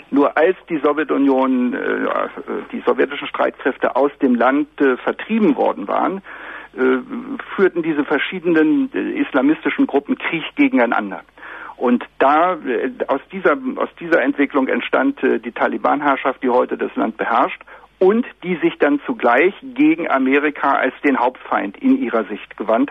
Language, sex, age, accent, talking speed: German, male, 60-79, German, 130 wpm